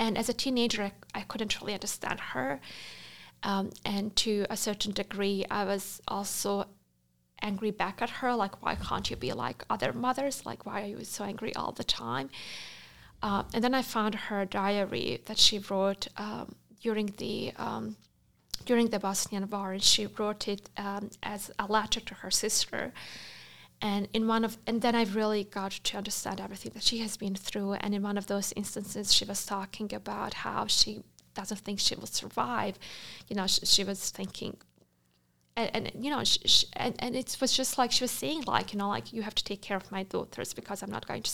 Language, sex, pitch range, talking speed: English, female, 195-220 Hz, 205 wpm